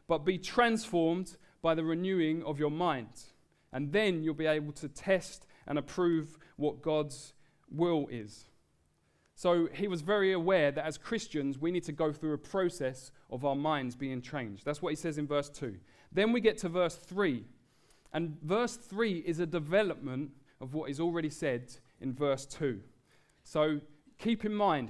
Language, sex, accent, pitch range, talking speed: English, male, British, 135-175 Hz, 175 wpm